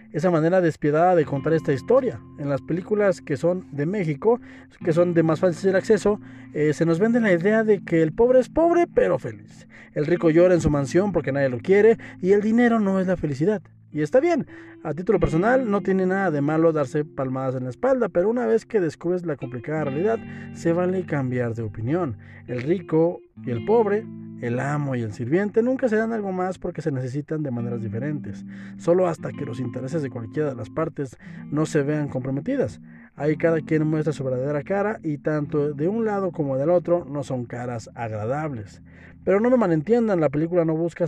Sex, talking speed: male, 205 wpm